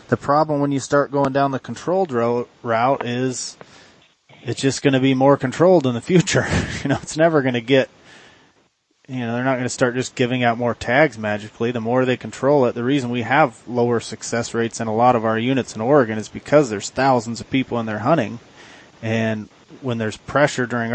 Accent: American